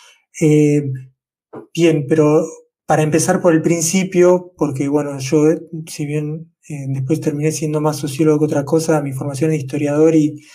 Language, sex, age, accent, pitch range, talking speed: Spanish, male, 20-39, Argentinian, 145-160 Hz, 155 wpm